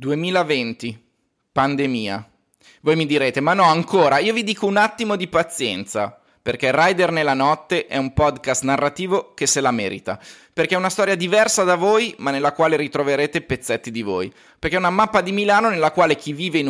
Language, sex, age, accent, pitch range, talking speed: Italian, male, 20-39, native, 130-180 Hz, 185 wpm